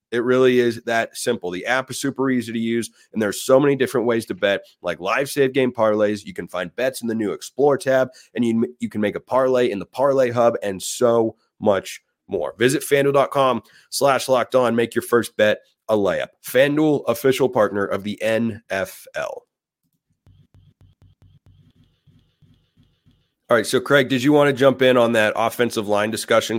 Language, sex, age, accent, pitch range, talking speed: English, male, 30-49, American, 110-135 Hz, 185 wpm